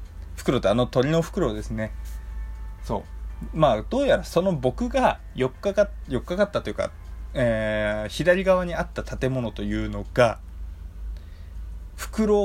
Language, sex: Japanese, male